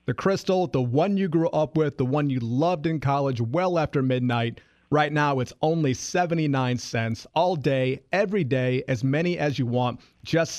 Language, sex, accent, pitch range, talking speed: English, male, American, 130-165 Hz, 185 wpm